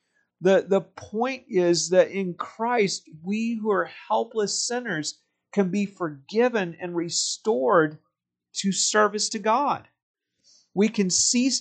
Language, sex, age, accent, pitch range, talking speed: English, male, 40-59, American, 150-195 Hz, 125 wpm